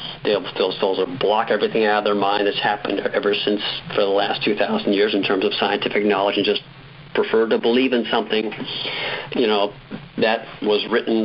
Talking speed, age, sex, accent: 190 wpm, 50-69, male, American